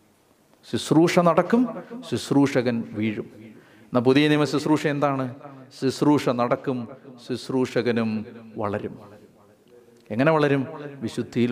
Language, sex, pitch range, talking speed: Malayalam, male, 120-155 Hz, 85 wpm